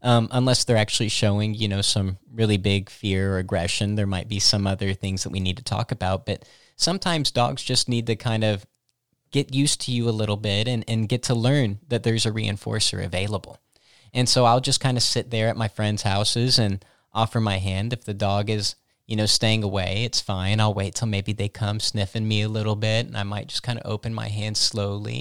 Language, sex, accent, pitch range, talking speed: English, male, American, 100-120 Hz, 230 wpm